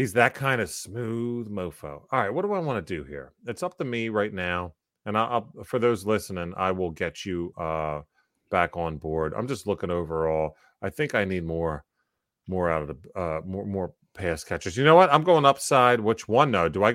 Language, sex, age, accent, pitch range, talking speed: English, male, 30-49, American, 90-125 Hz, 225 wpm